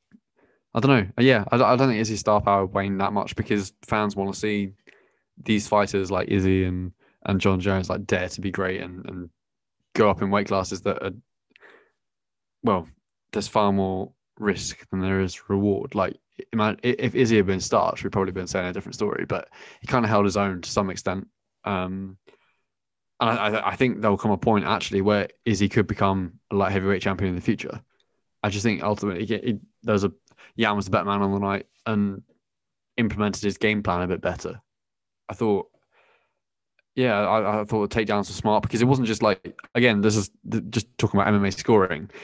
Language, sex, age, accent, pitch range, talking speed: English, male, 20-39, British, 95-110 Hz, 205 wpm